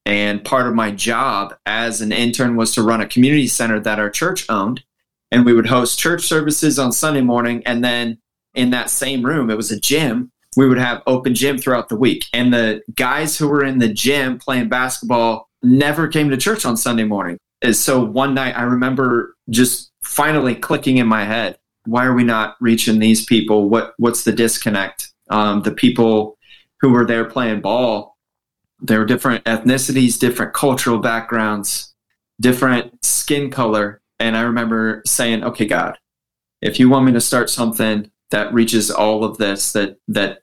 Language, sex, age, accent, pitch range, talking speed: English, male, 30-49, American, 110-125 Hz, 185 wpm